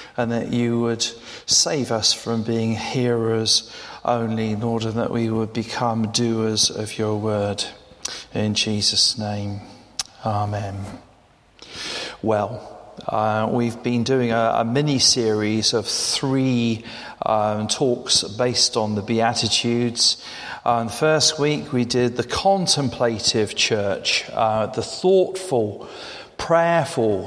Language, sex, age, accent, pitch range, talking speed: English, male, 40-59, British, 110-140 Hz, 115 wpm